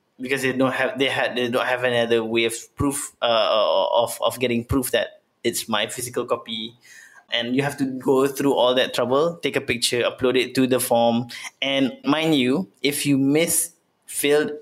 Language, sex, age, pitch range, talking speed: English, male, 20-39, 120-140 Hz, 195 wpm